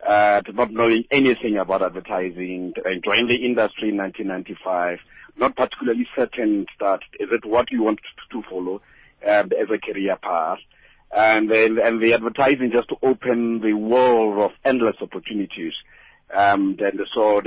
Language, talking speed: English, 150 wpm